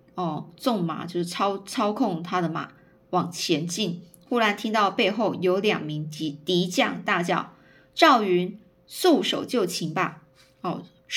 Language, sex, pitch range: Chinese, female, 180-235 Hz